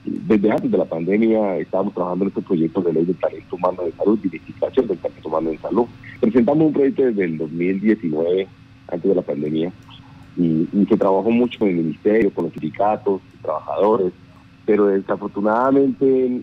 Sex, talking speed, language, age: male, 200 wpm, Spanish, 40-59